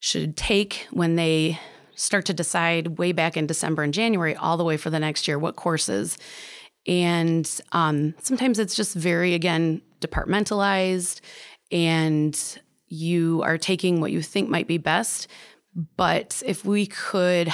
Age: 30-49